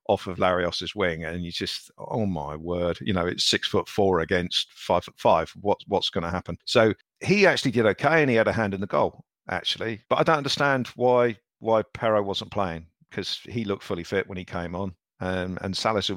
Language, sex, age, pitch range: English, male, 50-69, 95-115 Hz